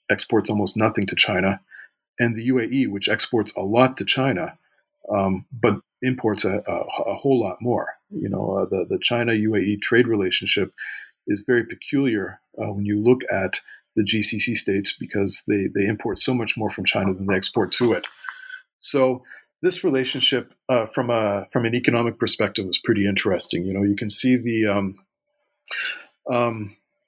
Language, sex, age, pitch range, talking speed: English, male, 40-59, 100-125 Hz, 170 wpm